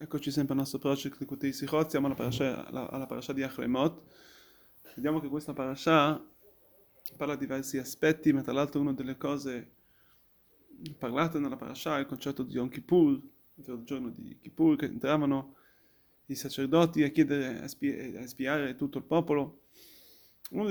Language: Italian